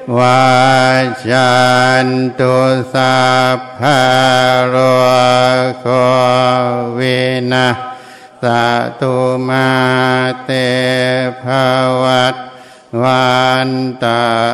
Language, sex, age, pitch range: Thai, male, 60-79, 125-130 Hz